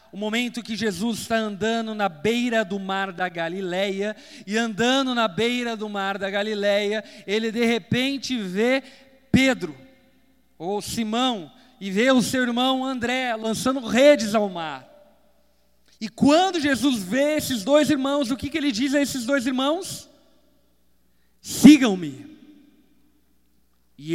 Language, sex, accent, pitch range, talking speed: Portuguese, male, Brazilian, 205-285 Hz, 135 wpm